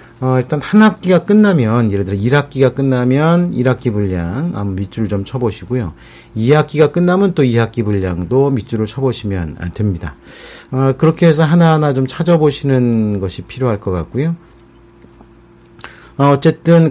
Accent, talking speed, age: Korean, 125 wpm, 40-59